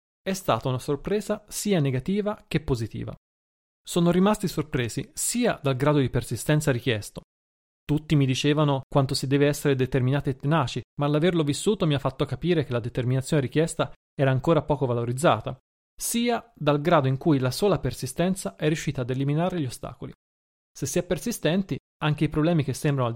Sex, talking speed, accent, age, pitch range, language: male, 170 wpm, native, 30-49, 125-165 Hz, Italian